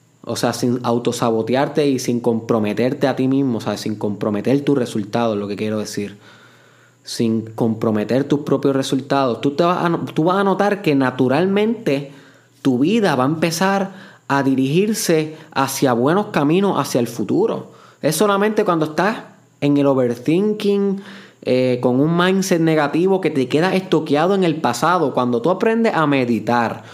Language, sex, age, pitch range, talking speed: Spanish, male, 20-39, 120-160 Hz, 160 wpm